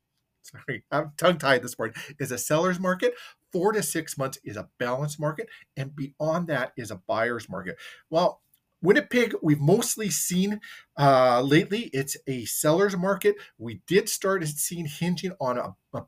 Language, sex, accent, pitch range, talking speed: English, male, American, 135-180 Hz, 160 wpm